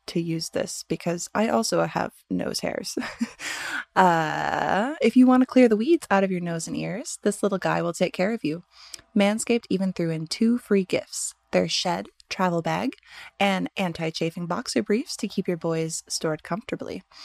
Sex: female